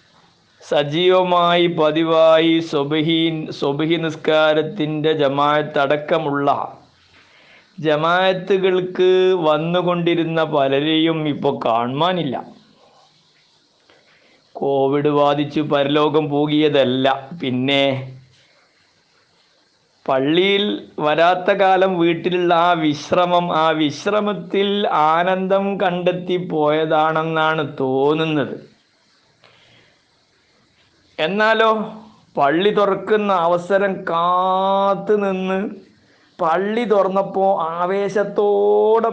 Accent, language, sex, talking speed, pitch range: native, Malayalam, male, 55 wpm, 155-190 Hz